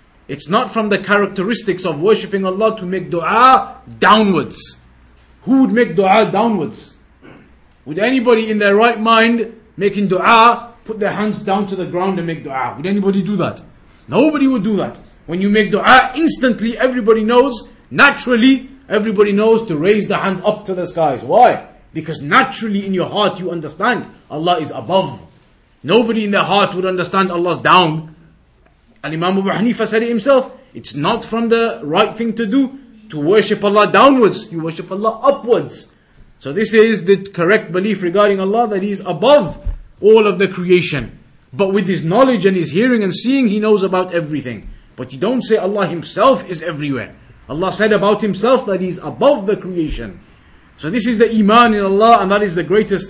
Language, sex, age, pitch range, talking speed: English, male, 30-49, 180-225 Hz, 185 wpm